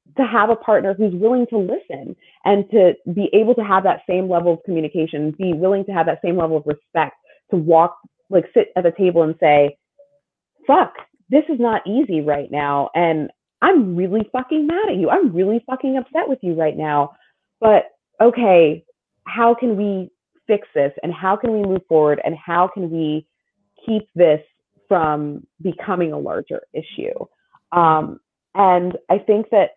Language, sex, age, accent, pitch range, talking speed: English, female, 30-49, American, 160-215 Hz, 175 wpm